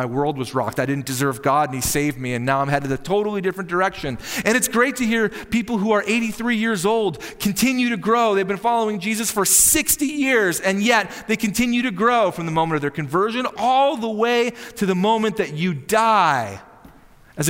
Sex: male